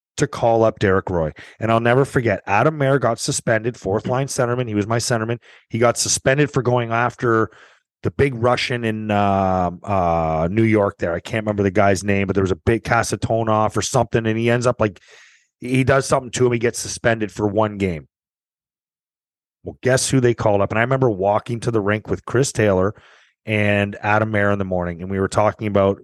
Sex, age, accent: male, 30-49, American